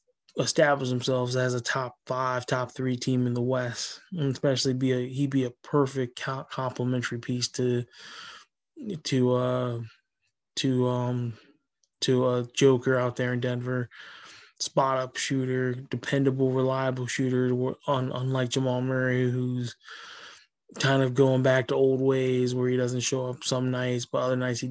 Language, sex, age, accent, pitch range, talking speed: English, male, 20-39, American, 125-135 Hz, 155 wpm